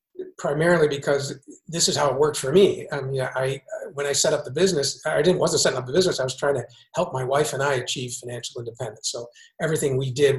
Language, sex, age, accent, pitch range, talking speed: English, male, 50-69, American, 135-185 Hz, 235 wpm